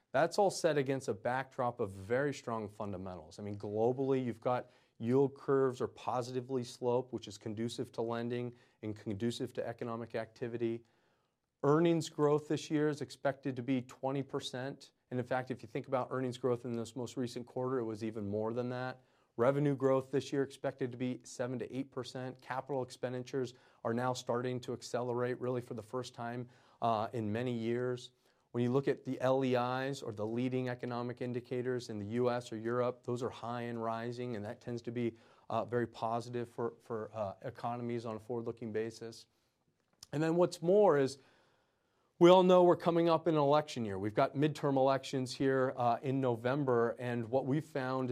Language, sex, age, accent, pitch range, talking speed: English, male, 30-49, American, 115-135 Hz, 185 wpm